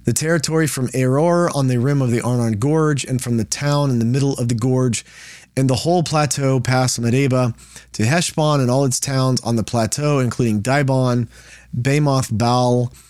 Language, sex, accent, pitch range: English, male, American, 120-145 Hz